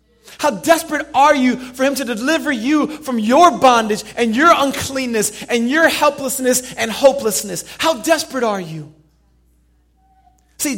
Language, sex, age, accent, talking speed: English, male, 30-49, American, 140 wpm